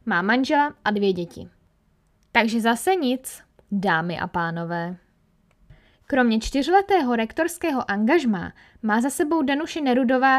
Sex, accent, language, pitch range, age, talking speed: female, native, Czech, 190-265 Hz, 10-29, 115 wpm